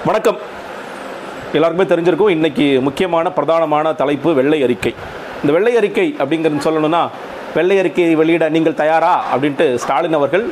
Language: Tamil